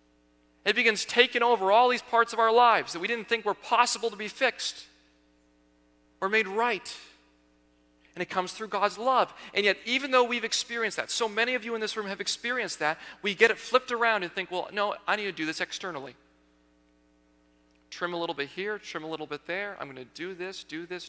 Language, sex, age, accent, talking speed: English, male, 40-59, American, 220 wpm